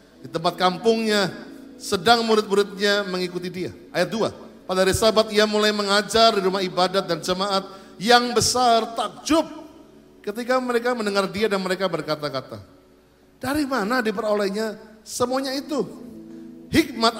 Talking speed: 125 wpm